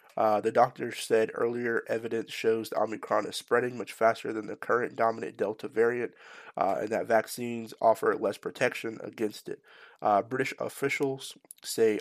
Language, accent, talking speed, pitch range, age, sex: English, American, 155 wpm, 110-120 Hz, 20-39, male